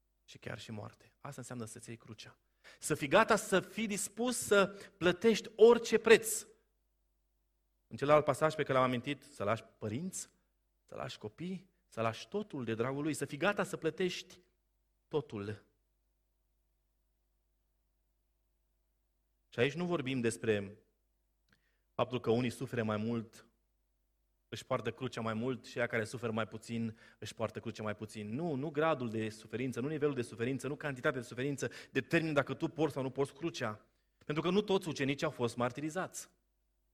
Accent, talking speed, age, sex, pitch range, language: native, 160 wpm, 30-49, male, 110-145 Hz, Romanian